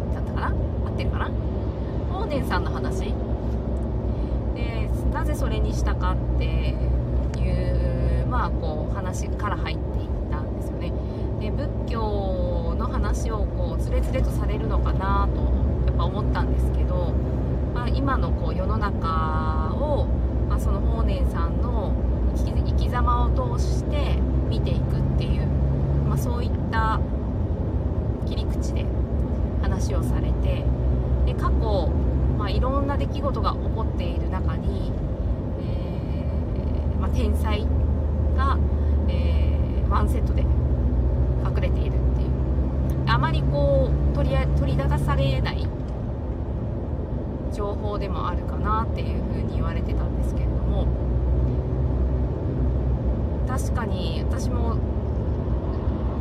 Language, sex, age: Japanese, female, 20-39